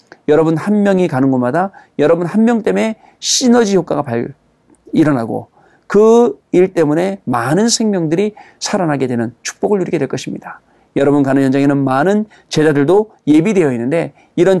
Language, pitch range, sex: Korean, 140-200 Hz, male